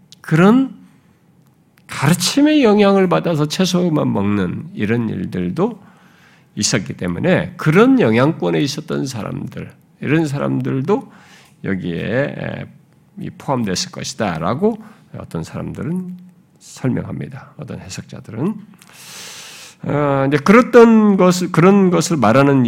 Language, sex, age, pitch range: Korean, male, 50-69, 130-210 Hz